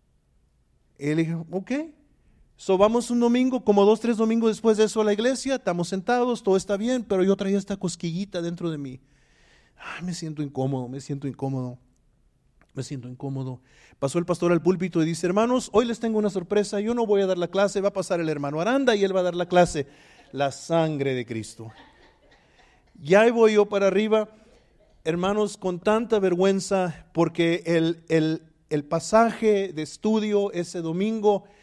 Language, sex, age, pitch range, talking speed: Spanish, male, 40-59, 155-200 Hz, 180 wpm